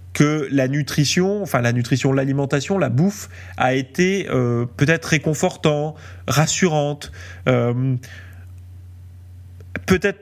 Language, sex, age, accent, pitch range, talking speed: French, male, 20-39, French, 110-165 Hz, 100 wpm